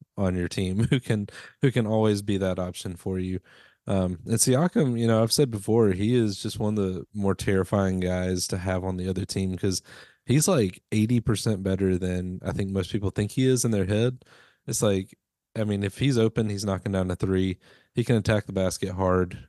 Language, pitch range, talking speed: English, 95-110 Hz, 220 wpm